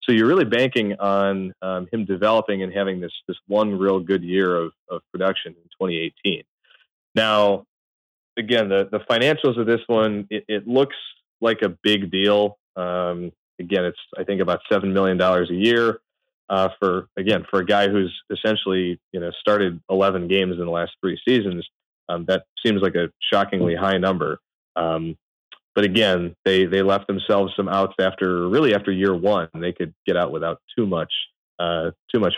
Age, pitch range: 30-49, 90-105 Hz